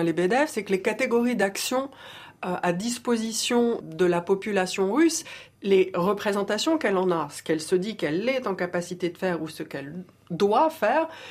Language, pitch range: French, 190-260 Hz